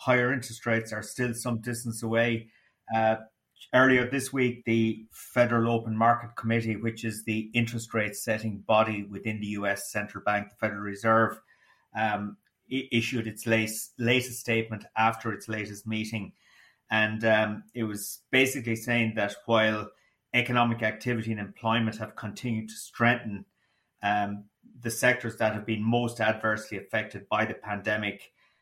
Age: 30-49